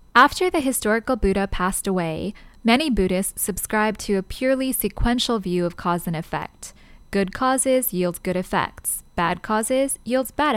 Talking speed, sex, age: 155 wpm, female, 10-29